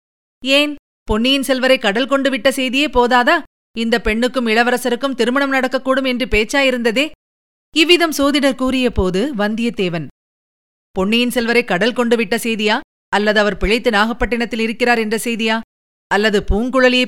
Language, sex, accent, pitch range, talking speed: Tamil, female, native, 205-260 Hz, 115 wpm